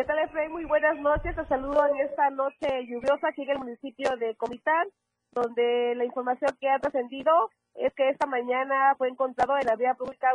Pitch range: 240-280 Hz